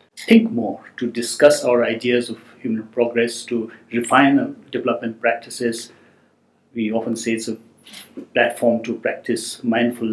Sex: male